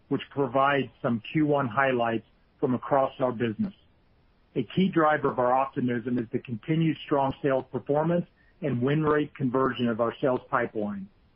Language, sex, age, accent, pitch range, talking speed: English, male, 50-69, American, 125-150 Hz, 155 wpm